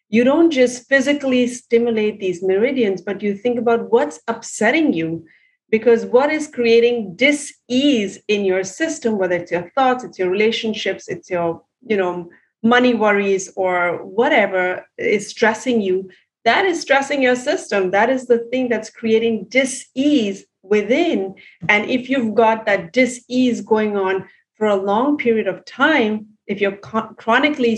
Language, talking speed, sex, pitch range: English, 145 wpm, female, 200-250 Hz